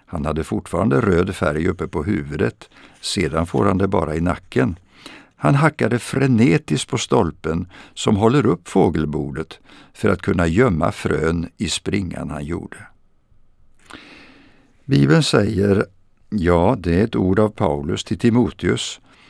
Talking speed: 135 wpm